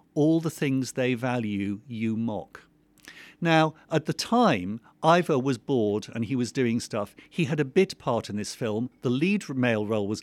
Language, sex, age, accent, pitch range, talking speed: English, male, 50-69, British, 120-160 Hz, 190 wpm